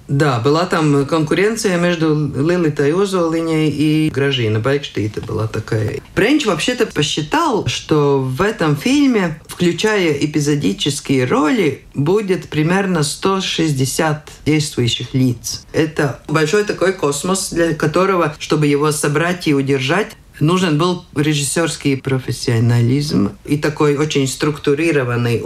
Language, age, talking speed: Russian, 50-69, 110 wpm